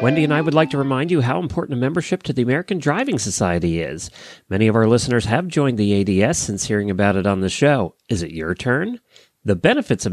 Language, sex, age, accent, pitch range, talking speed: English, male, 40-59, American, 100-150 Hz, 235 wpm